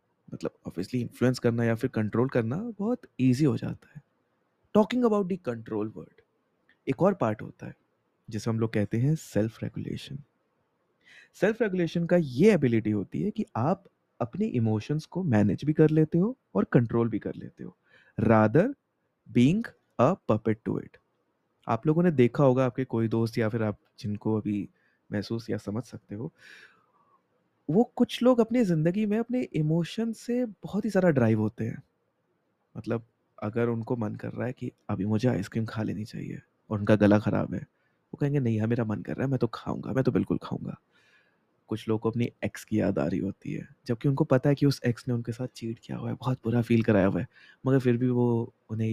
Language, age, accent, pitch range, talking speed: Hindi, 20-39, native, 110-150 Hz, 200 wpm